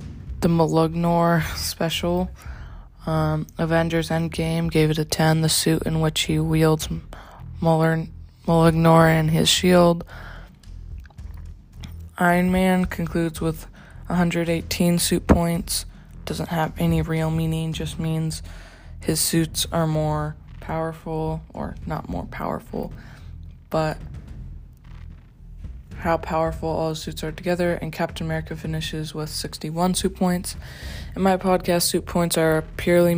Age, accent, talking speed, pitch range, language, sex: 20-39, American, 120 wpm, 155-170 Hz, English, female